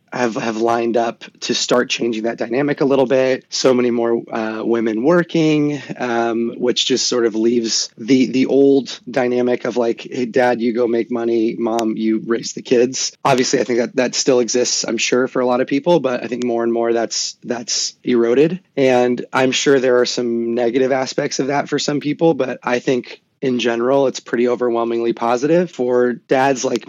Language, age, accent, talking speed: English, 30-49, American, 200 wpm